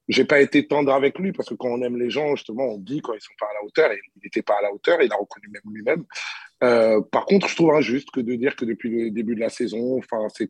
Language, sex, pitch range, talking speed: French, male, 120-155 Hz, 310 wpm